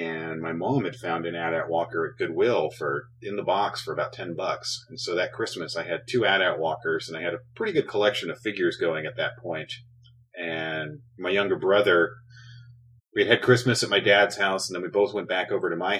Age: 30-49